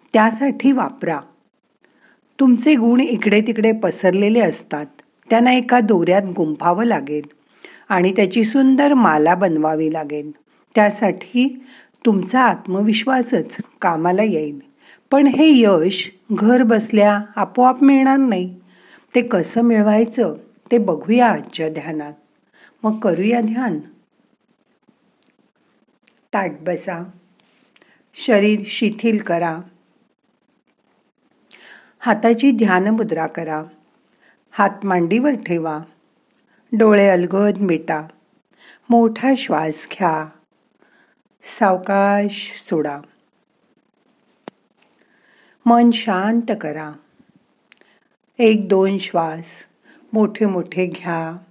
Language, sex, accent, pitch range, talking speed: Marathi, female, native, 175-240 Hz, 80 wpm